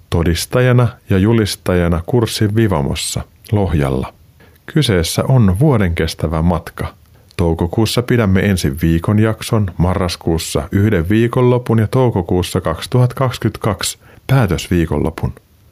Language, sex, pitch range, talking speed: Finnish, male, 85-120 Hz, 85 wpm